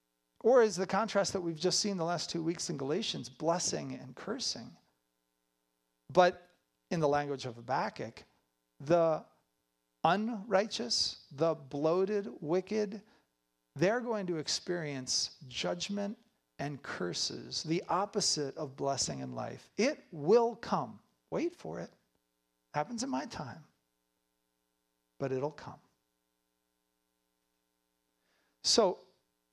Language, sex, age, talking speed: English, male, 50-69, 110 wpm